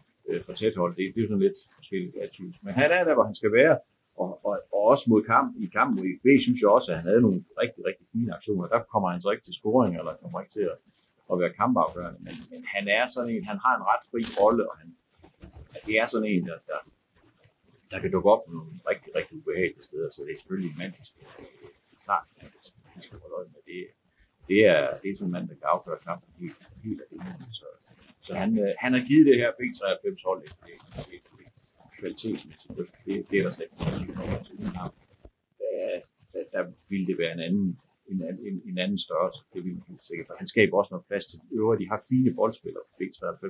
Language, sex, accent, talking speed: Danish, male, native, 220 wpm